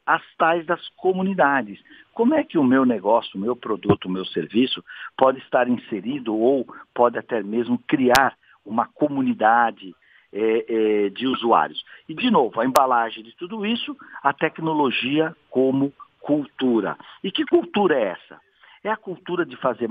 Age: 60-79